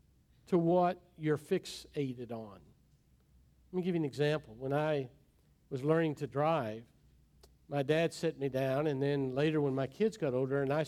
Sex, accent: male, American